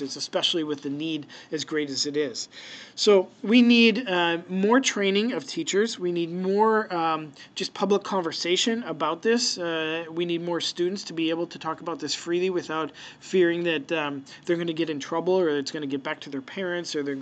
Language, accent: English, American